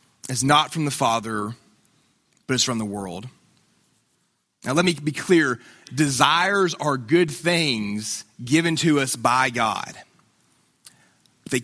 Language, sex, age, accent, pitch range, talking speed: English, male, 30-49, American, 125-160 Hz, 130 wpm